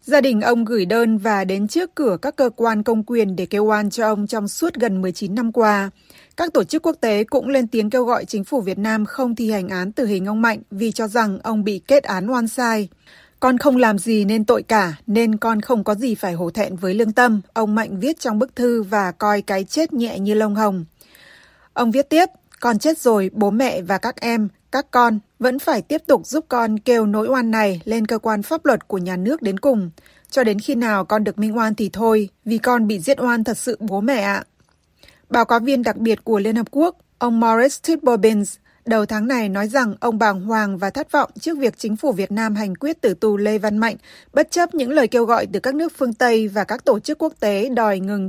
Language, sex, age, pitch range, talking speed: Vietnamese, female, 20-39, 210-255 Hz, 245 wpm